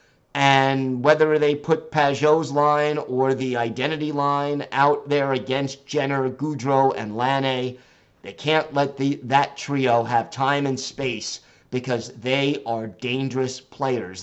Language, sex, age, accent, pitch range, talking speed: English, male, 50-69, American, 125-150 Hz, 130 wpm